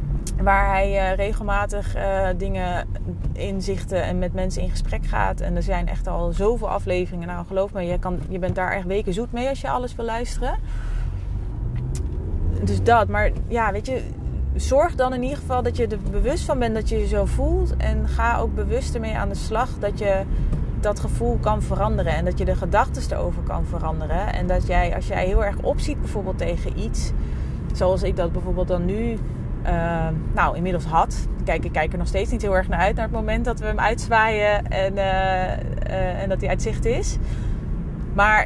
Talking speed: 200 wpm